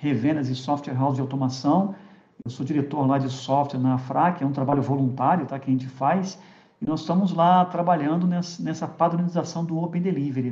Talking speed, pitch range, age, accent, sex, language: 190 wpm, 145-195 Hz, 50-69, Brazilian, male, Portuguese